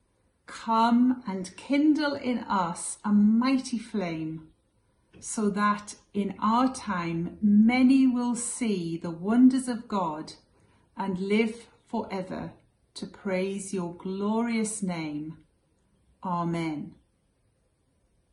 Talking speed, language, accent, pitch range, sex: 95 wpm, English, British, 175-235 Hz, female